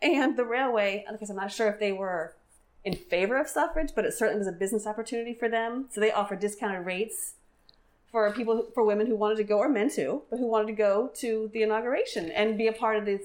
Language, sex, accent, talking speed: English, female, American, 235 wpm